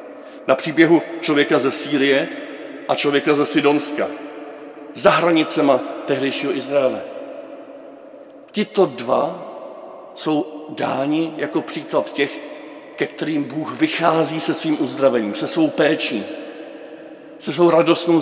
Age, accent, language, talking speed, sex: 50-69, native, Czech, 110 wpm, male